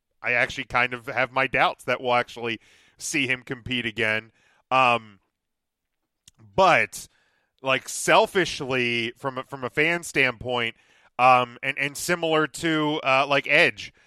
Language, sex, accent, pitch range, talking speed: English, male, American, 125-150 Hz, 135 wpm